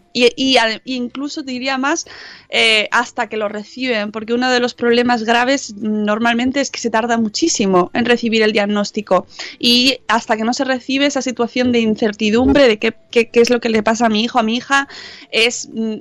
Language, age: Spanish, 20-39